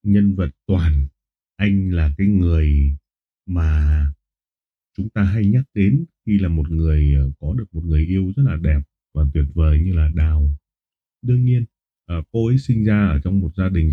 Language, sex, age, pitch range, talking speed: Vietnamese, male, 20-39, 80-105 Hz, 180 wpm